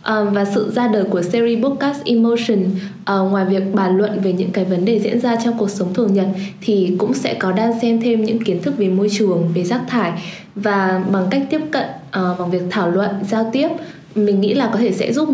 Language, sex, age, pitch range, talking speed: Vietnamese, female, 10-29, 190-235 Hz, 225 wpm